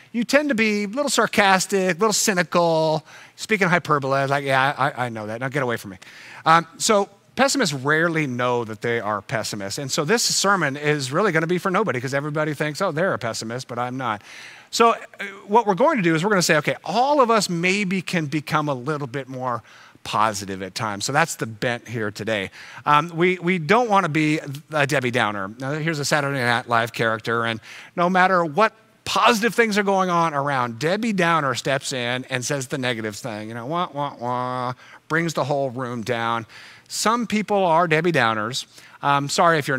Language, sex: English, male